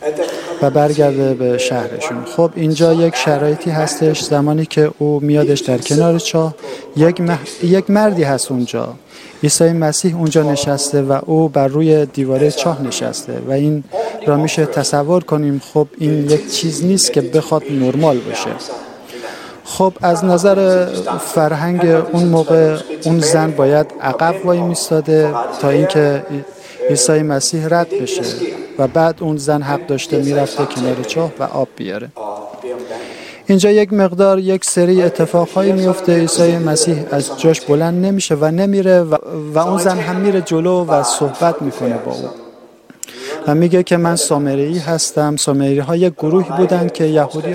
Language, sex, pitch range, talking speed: Persian, male, 145-175 Hz, 150 wpm